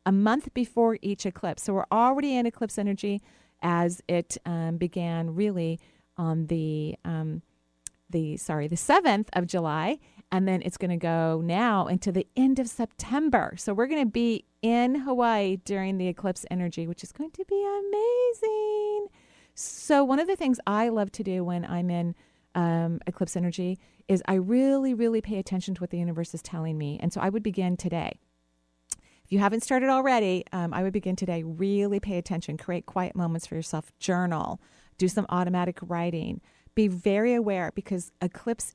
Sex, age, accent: female, 40-59, American